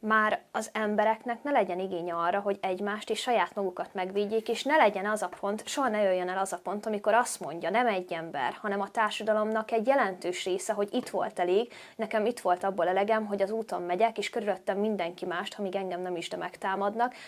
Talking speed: 210 wpm